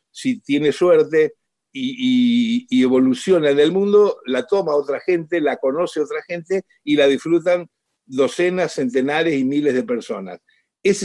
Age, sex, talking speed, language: 50-69, male, 150 wpm, Spanish